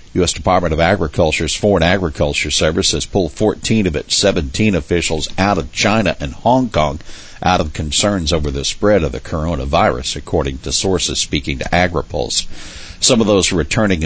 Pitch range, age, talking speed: 75-95 Hz, 60-79, 165 wpm